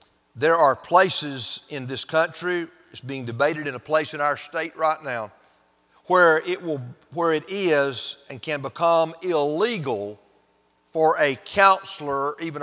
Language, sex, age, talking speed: English, male, 50-69, 145 wpm